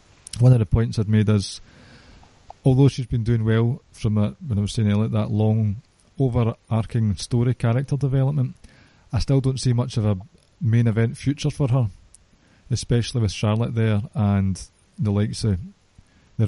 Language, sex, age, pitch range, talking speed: English, male, 20-39, 105-120 Hz, 170 wpm